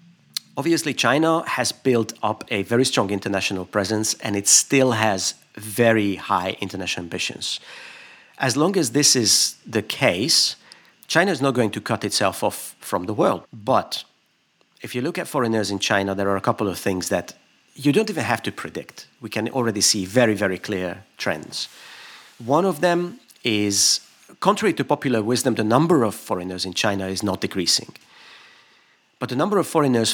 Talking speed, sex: 175 wpm, male